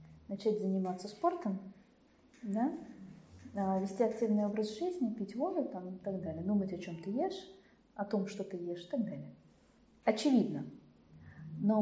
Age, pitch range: 20-39, 175-230 Hz